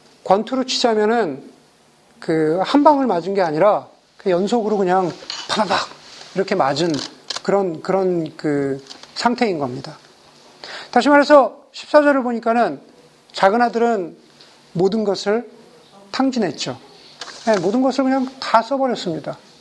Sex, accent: male, native